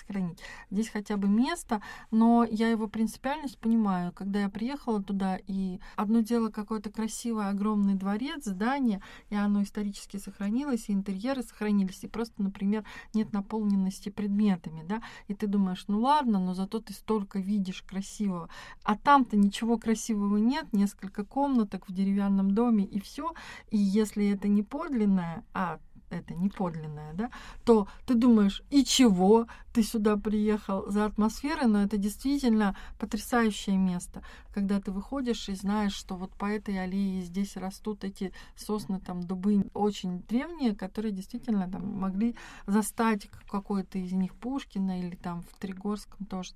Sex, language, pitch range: female, Russian, 195-230 Hz